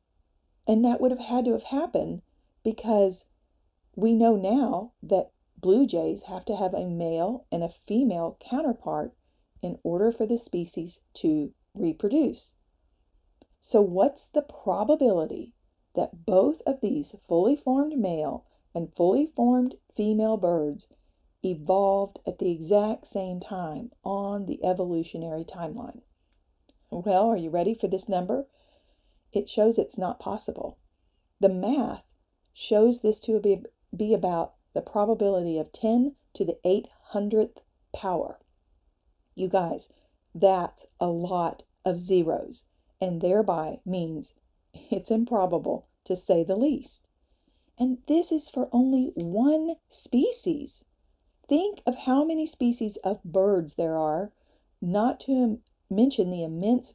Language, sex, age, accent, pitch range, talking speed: English, female, 40-59, American, 175-245 Hz, 125 wpm